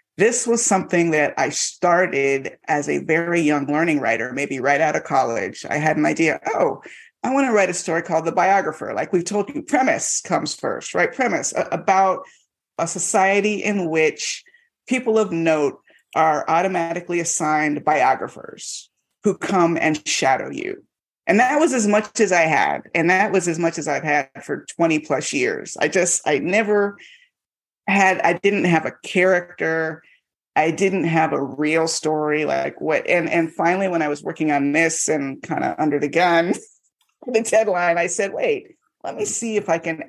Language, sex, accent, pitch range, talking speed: English, female, American, 155-205 Hz, 180 wpm